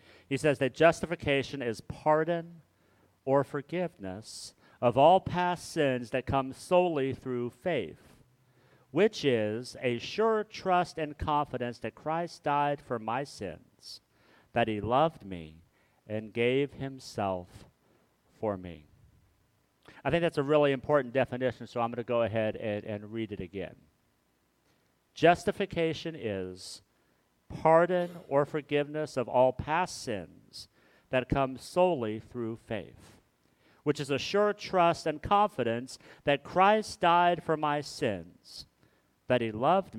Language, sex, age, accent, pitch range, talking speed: English, male, 50-69, American, 115-155 Hz, 130 wpm